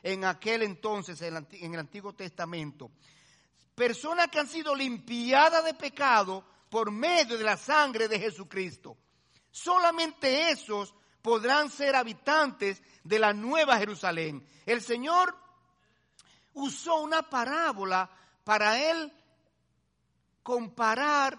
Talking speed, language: 105 wpm, Spanish